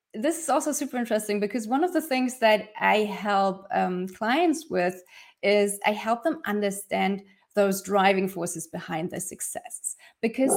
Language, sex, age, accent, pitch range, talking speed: English, female, 20-39, German, 205-270 Hz, 160 wpm